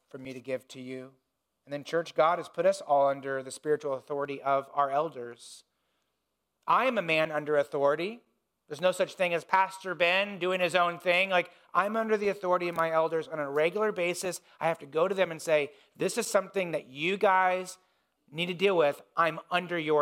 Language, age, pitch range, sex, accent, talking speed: English, 40-59, 145-185 Hz, male, American, 215 wpm